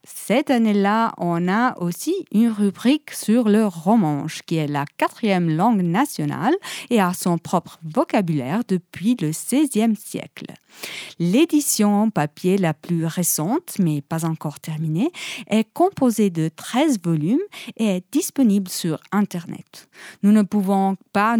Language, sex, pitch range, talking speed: Italian, female, 170-235 Hz, 135 wpm